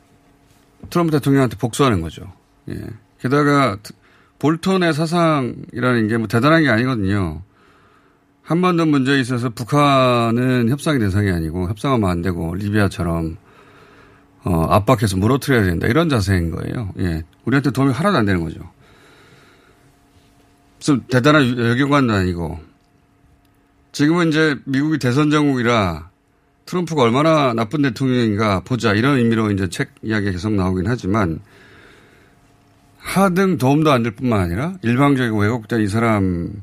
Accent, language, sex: native, Korean, male